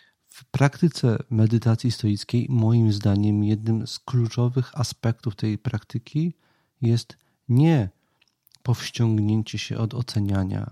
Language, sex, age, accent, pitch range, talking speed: Polish, male, 40-59, native, 110-130 Hz, 100 wpm